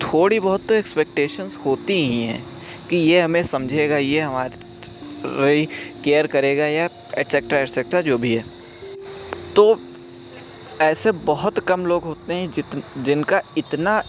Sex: male